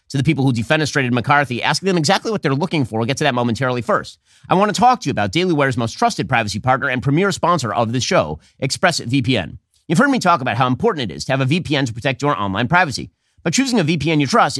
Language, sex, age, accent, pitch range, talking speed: English, male, 30-49, American, 125-165 Hz, 255 wpm